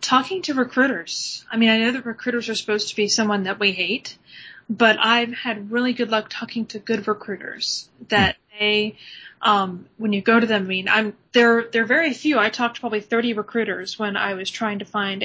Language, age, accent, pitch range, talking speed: English, 30-49, American, 200-240 Hz, 210 wpm